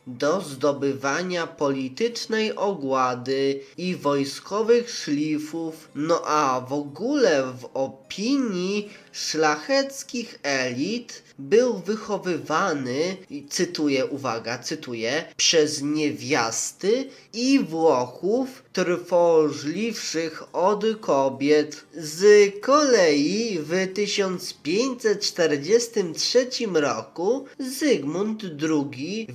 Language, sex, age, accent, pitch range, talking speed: Polish, male, 20-39, native, 140-195 Hz, 65 wpm